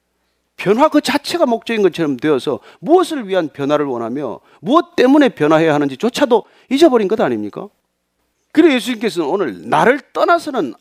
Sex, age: male, 40-59